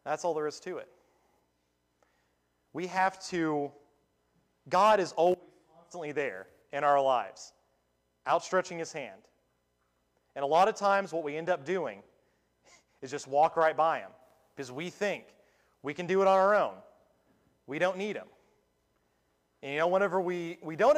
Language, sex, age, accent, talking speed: English, male, 30-49, American, 165 wpm